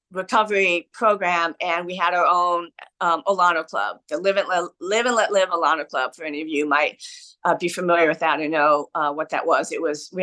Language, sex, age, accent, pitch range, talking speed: English, female, 50-69, American, 175-250 Hz, 215 wpm